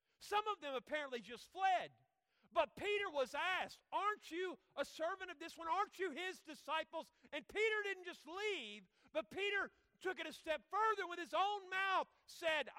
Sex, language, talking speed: male, English, 180 wpm